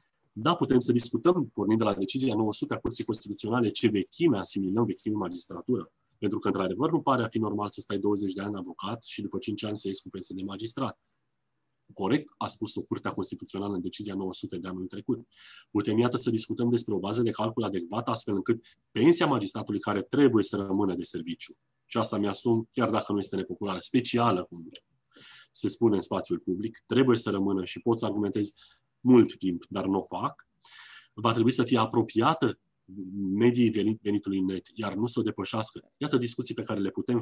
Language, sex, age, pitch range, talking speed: Romanian, male, 30-49, 100-120 Hz, 195 wpm